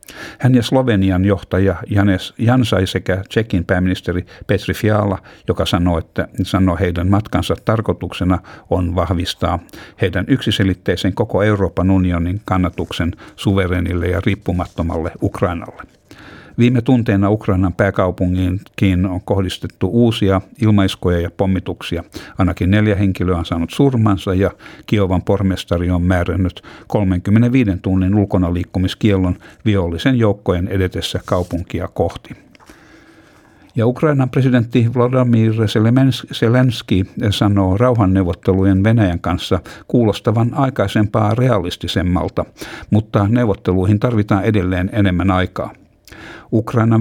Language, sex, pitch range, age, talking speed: Finnish, male, 90-110 Hz, 60-79, 100 wpm